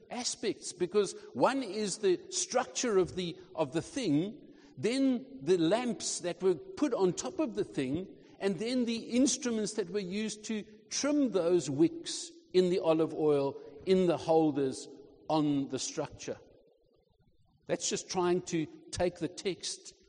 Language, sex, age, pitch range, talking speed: English, male, 60-79, 170-260 Hz, 150 wpm